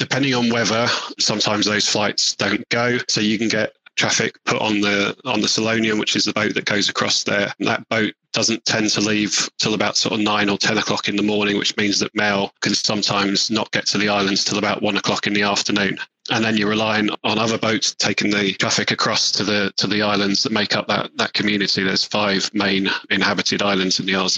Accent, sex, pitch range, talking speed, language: British, male, 100-110 Hz, 230 wpm, English